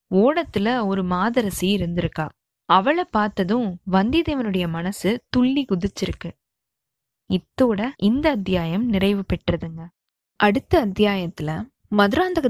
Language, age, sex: Tamil, 20-39, female